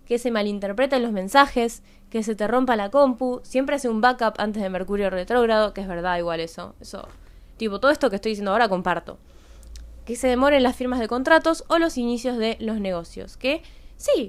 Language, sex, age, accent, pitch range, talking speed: Spanish, female, 20-39, Argentinian, 200-250 Hz, 200 wpm